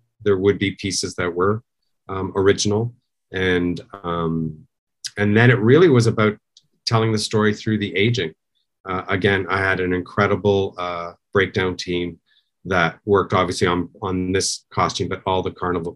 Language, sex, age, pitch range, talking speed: English, male, 40-59, 90-105 Hz, 160 wpm